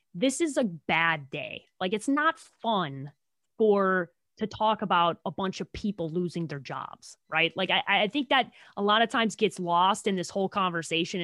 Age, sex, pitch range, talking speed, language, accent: 20-39, female, 175-235 Hz, 190 wpm, English, American